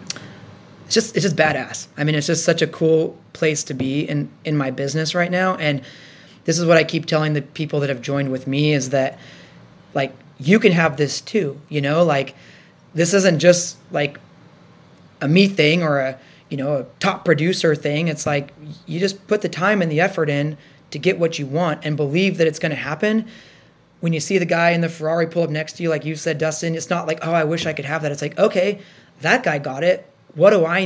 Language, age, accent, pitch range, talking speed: English, 20-39, American, 145-170 Hz, 235 wpm